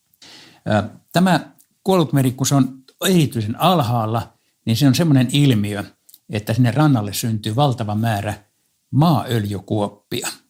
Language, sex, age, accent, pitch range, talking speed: Finnish, male, 60-79, native, 105-135 Hz, 105 wpm